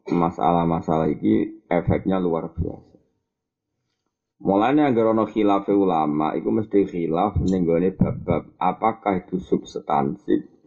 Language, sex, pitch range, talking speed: Indonesian, male, 85-105 Hz, 105 wpm